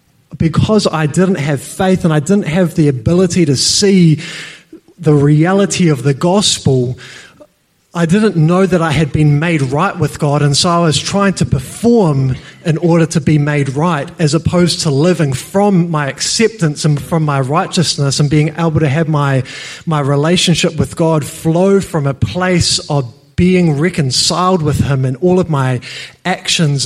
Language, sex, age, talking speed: English, male, 20-39, 170 wpm